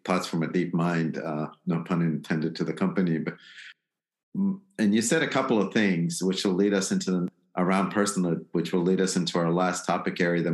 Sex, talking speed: male, 215 wpm